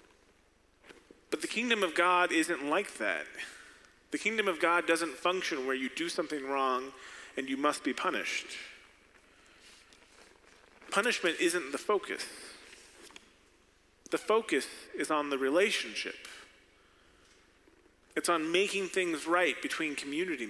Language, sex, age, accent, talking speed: English, male, 30-49, American, 120 wpm